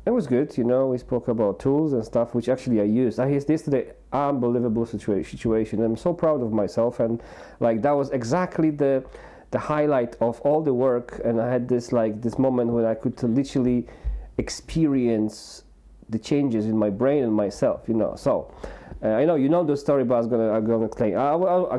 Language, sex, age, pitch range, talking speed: English, male, 40-59, 110-145 Hz, 200 wpm